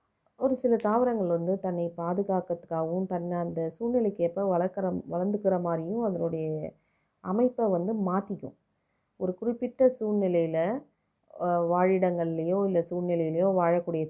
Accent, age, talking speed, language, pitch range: native, 30-49, 100 wpm, Tamil, 170-200 Hz